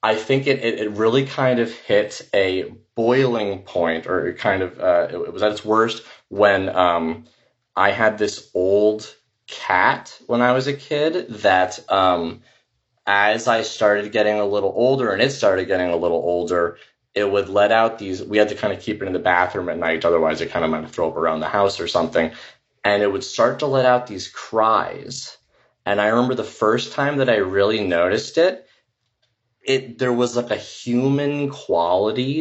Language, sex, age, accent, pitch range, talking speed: English, male, 20-39, American, 100-135 Hz, 200 wpm